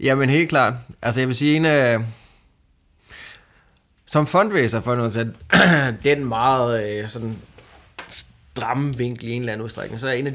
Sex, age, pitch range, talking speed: male, 30-49, 110-135 Hz, 170 wpm